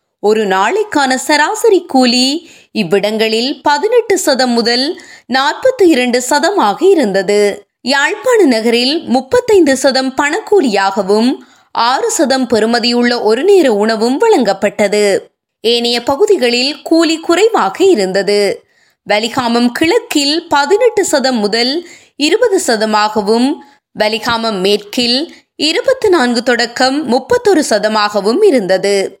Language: Tamil